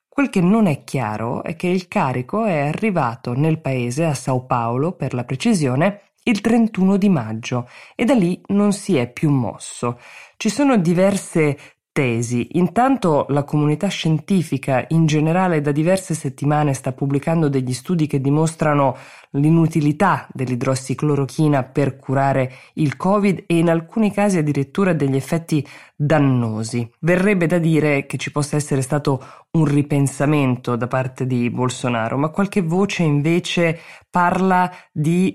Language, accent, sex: Italian, native, female